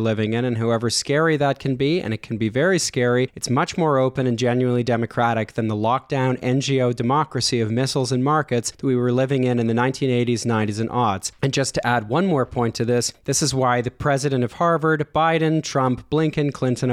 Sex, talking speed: male, 215 wpm